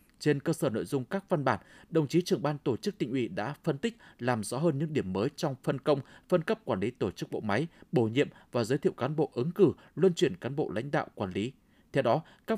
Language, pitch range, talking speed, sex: Vietnamese, 135-180 Hz, 265 wpm, male